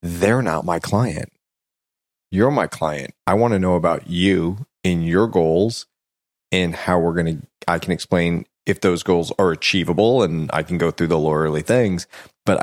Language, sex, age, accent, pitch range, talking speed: English, male, 30-49, American, 85-100 Hz, 180 wpm